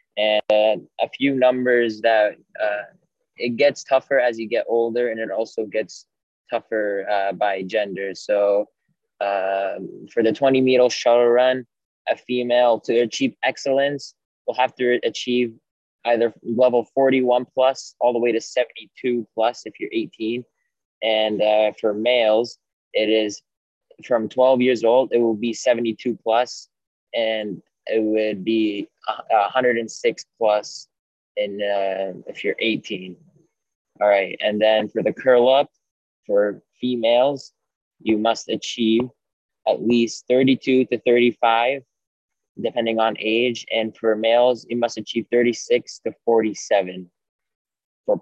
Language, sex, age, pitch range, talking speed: English, male, 20-39, 110-125 Hz, 135 wpm